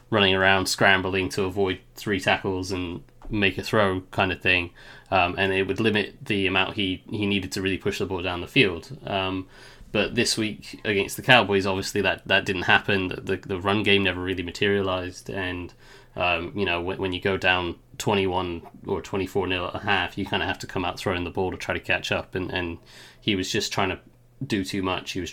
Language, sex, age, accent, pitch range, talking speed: English, male, 20-39, British, 90-100 Hz, 220 wpm